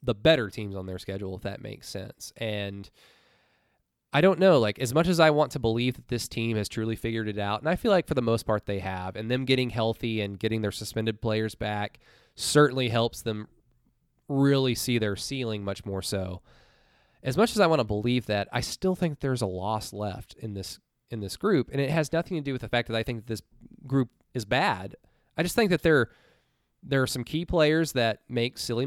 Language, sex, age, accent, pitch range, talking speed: English, male, 20-39, American, 110-145 Hz, 225 wpm